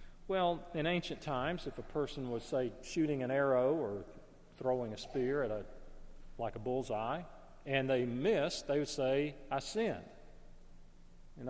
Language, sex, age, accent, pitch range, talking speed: English, male, 40-59, American, 120-150 Hz, 155 wpm